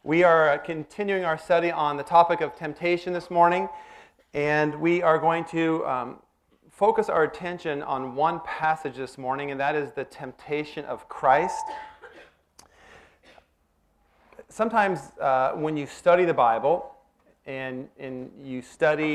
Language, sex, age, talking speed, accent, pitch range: English, male, 30-49, 140 wpm, American, 135-170 Hz